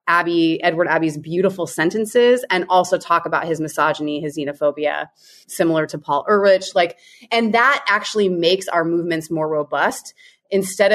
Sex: female